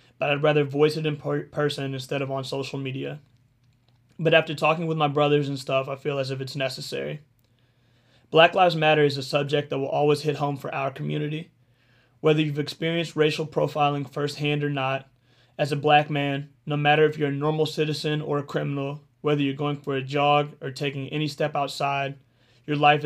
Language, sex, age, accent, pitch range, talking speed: English, male, 30-49, American, 135-150 Hz, 195 wpm